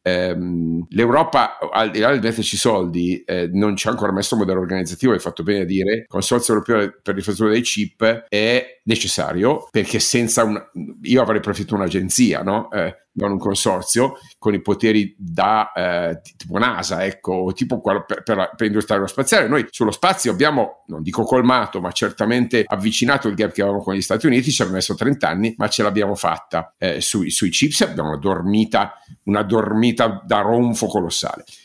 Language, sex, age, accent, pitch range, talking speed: Italian, male, 50-69, native, 95-120 Hz, 180 wpm